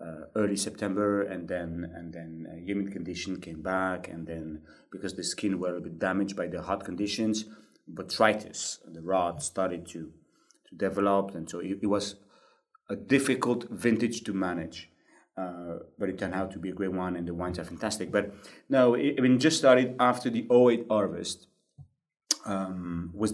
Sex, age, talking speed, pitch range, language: male, 30-49, 175 wpm, 95-110 Hz, English